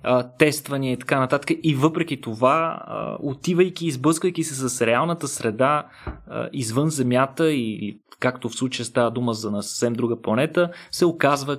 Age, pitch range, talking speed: 20-39, 120-150 Hz, 145 wpm